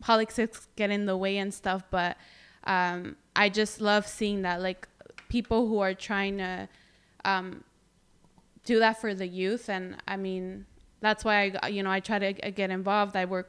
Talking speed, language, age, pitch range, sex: 185 wpm, English, 10-29, 185-210 Hz, female